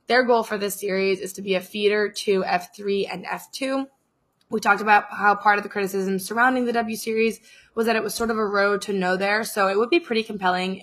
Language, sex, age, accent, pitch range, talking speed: English, female, 20-39, American, 180-215 Hz, 240 wpm